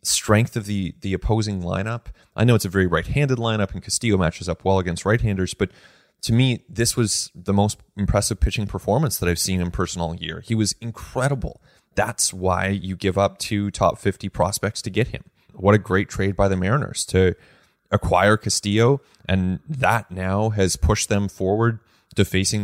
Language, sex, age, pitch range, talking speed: English, male, 20-39, 95-110 Hz, 190 wpm